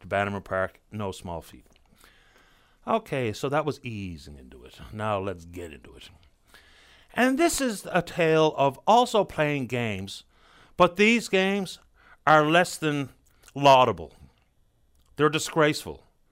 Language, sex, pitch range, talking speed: English, male, 115-180 Hz, 130 wpm